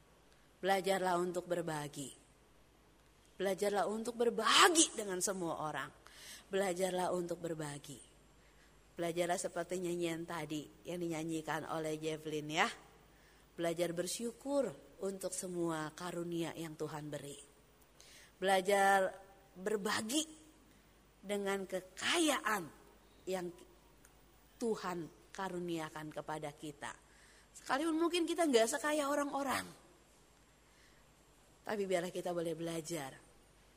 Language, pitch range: Indonesian, 155-200 Hz